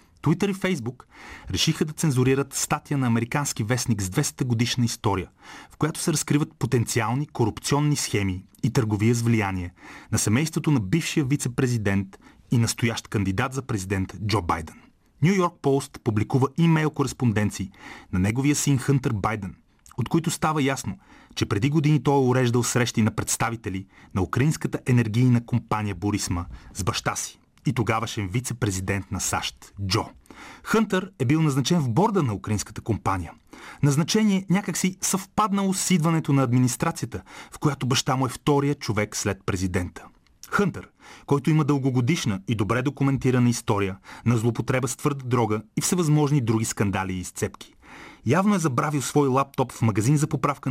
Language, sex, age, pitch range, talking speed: Bulgarian, male, 30-49, 110-150 Hz, 150 wpm